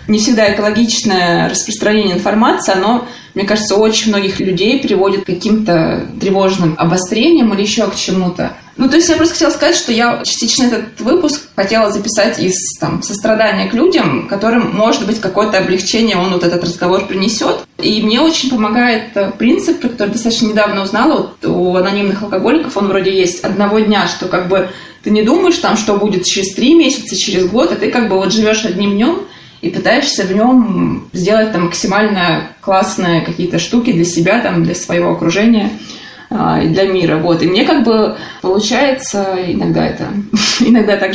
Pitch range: 190-230 Hz